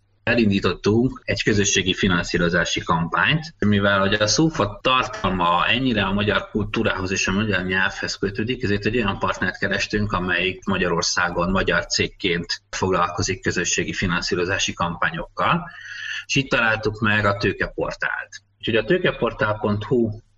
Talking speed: 120 wpm